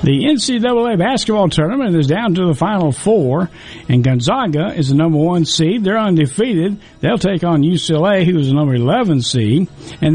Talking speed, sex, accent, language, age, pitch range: 175 wpm, male, American, English, 60-79, 130-175 Hz